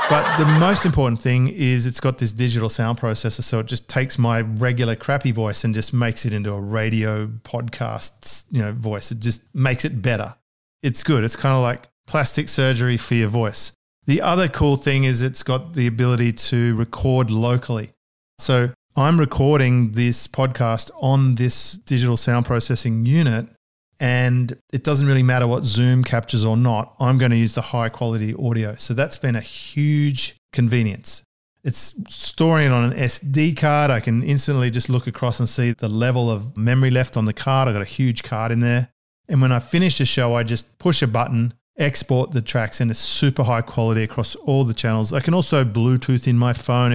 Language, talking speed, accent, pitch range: English, 195 wpm, Australian, 115-135 Hz